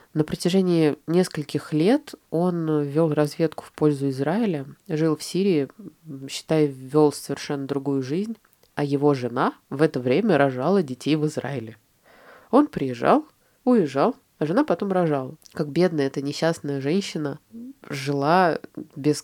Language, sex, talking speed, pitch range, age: Russian, female, 130 wpm, 140-165 Hz, 20-39